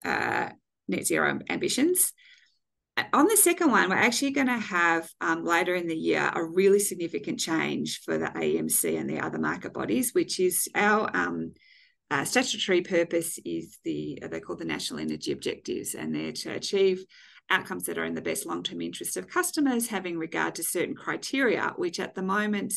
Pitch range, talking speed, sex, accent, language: 170-285 Hz, 180 wpm, female, Australian, English